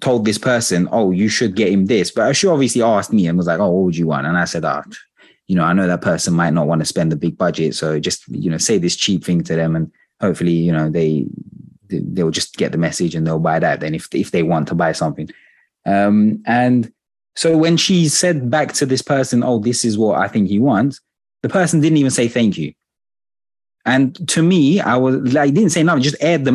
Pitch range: 100-140 Hz